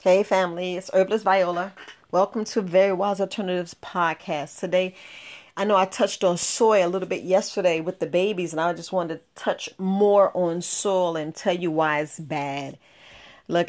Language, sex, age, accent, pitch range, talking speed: English, female, 40-59, American, 175-205 Hz, 185 wpm